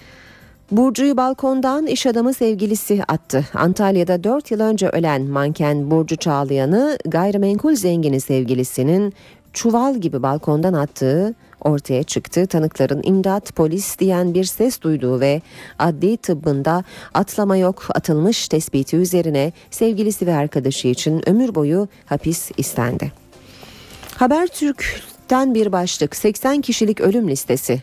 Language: Turkish